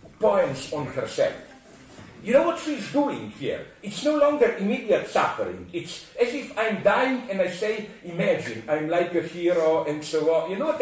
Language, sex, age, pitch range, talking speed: English, male, 50-69, 180-260 Hz, 185 wpm